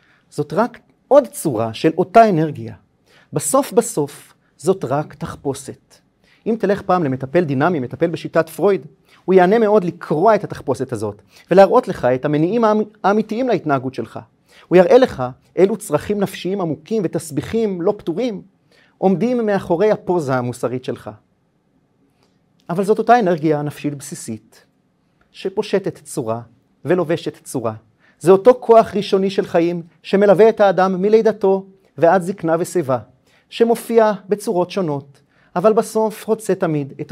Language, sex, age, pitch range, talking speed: Hebrew, male, 40-59, 140-200 Hz, 130 wpm